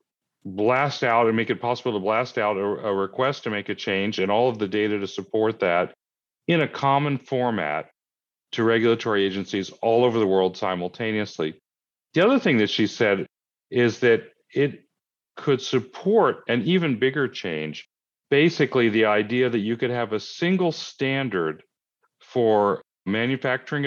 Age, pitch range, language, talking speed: 40-59, 100-125 Hz, English, 160 wpm